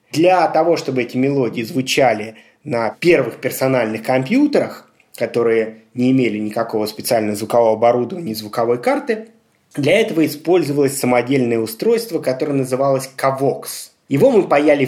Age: 20-39